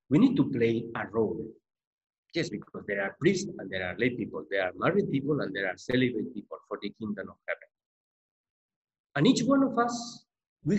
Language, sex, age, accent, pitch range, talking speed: English, male, 50-69, Spanish, 135-220 Hz, 205 wpm